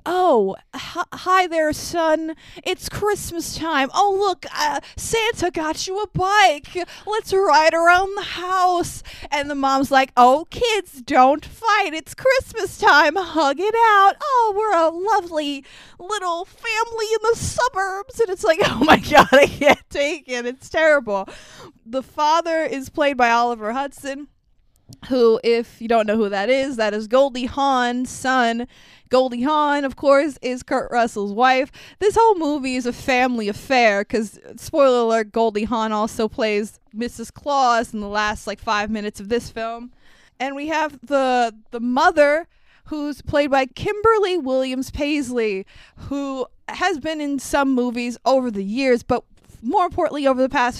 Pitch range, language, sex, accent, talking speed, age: 245-340 Hz, English, female, American, 160 wpm, 20-39